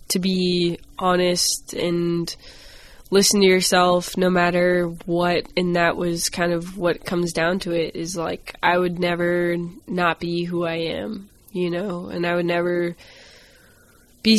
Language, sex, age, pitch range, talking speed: English, female, 20-39, 175-190 Hz, 155 wpm